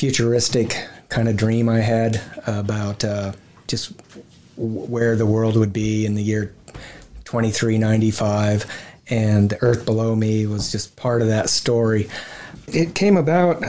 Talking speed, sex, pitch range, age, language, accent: 145 wpm, male, 110-125 Hz, 30-49, English, American